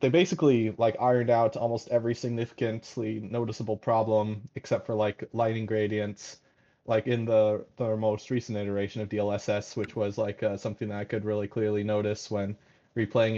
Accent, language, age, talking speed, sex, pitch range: American, English, 20-39, 165 wpm, male, 110-120 Hz